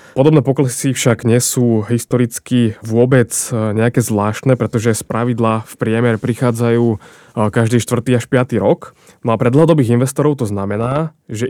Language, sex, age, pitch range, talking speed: Slovak, male, 20-39, 110-125 Hz, 140 wpm